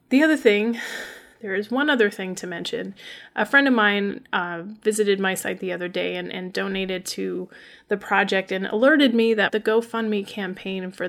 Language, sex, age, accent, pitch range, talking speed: English, female, 30-49, American, 185-215 Hz, 190 wpm